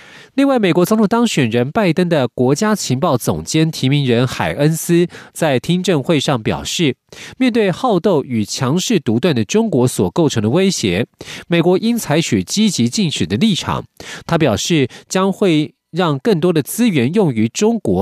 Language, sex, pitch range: Chinese, male, 130-195 Hz